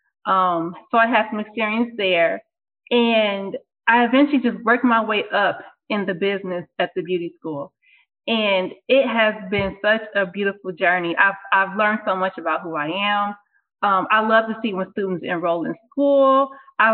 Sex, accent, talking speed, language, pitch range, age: female, American, 175 wpm, English, 190-235 Hz, 20-39